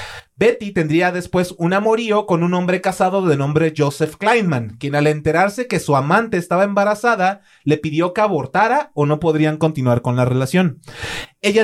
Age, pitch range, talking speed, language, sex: 30-49, 155-205 Hz, 170 wpm, Spanish, male